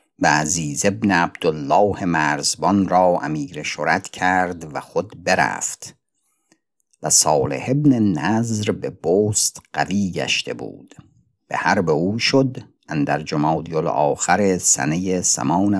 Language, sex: Persian, male